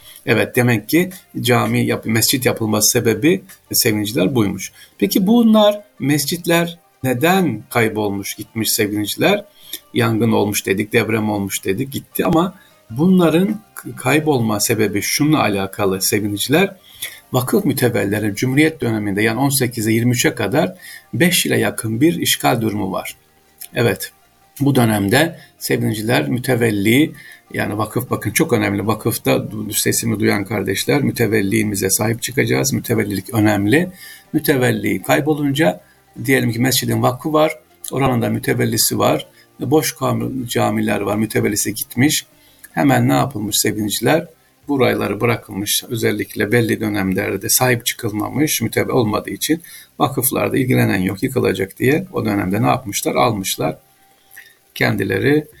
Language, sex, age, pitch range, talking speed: Turkish, male, 50-69, 105-140 Hz, 115 wpm